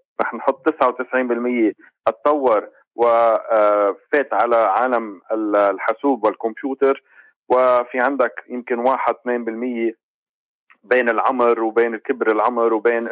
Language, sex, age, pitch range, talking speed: English, male, 40-59, 115-130 Hz, 85 wpm